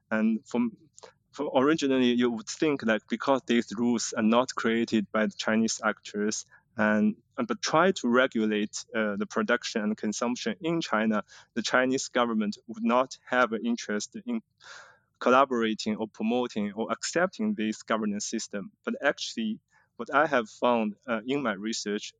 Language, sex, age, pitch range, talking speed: English, male, 20-39, 110-130 Hz, 160 wpm